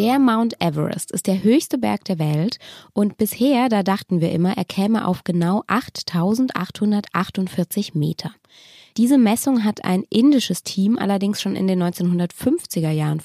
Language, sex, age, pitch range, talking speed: German, female, 20-39, 175-235 Hz, 150 wpm